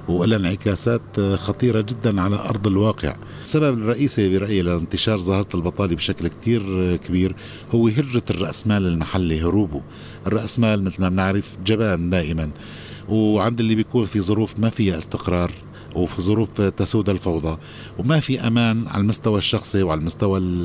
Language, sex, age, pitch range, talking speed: Arabic, male, 50-69, 100-120 Hz, 135 wpm